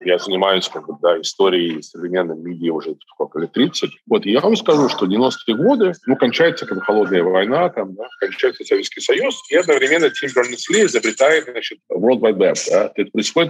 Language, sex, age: Russian, male, 40-59